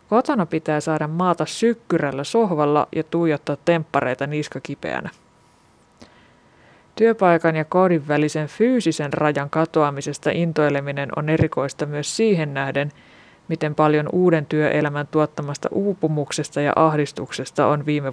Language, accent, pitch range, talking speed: Finnish, native, 150-170 Hz, 110 wpm